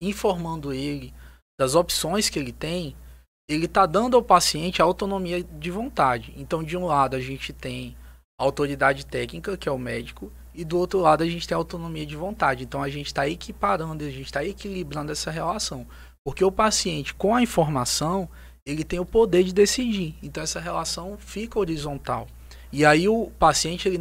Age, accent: 20-39, Brazilian